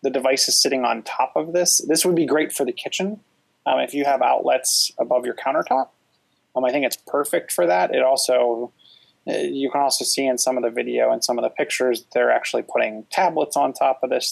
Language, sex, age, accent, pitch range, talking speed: English, male, 20-39, American, 115-140 Hz, 225 wpm